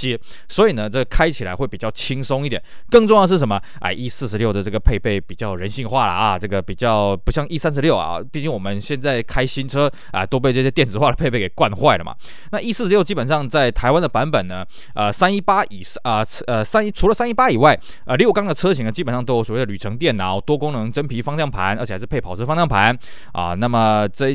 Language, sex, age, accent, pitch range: Chinese, male, 20-39, native, 115-175 Hz